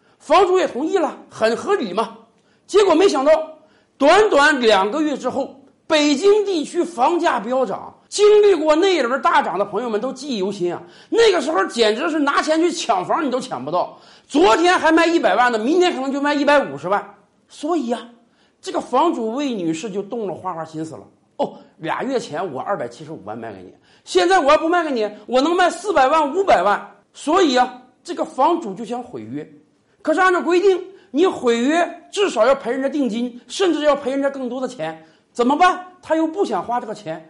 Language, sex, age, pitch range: Chinese, male, 50-69, 225-335 Hz